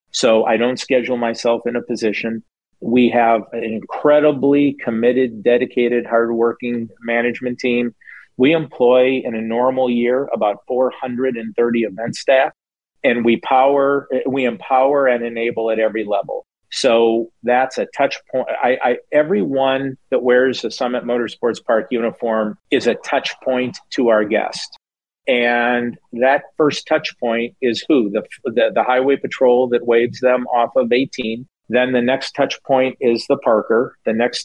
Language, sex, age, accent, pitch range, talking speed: English, male, 40-59, American, 115-130 Hz, 150 wpm